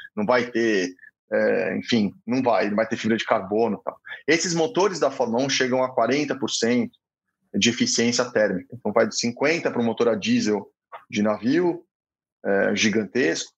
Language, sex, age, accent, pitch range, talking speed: Portuguese, male, 20-39, Brazilian, 115-160 Hz, 170 wpm